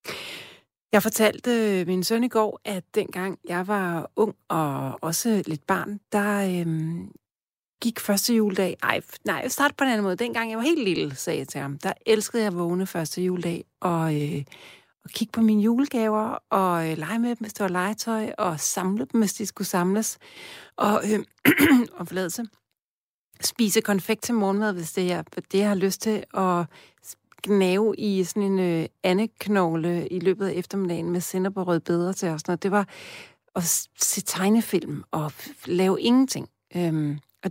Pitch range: 175-220 Hz